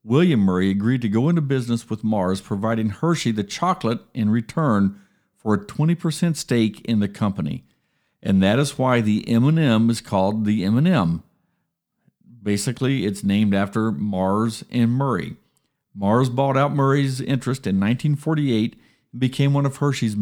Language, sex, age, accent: English, male, 50-69, American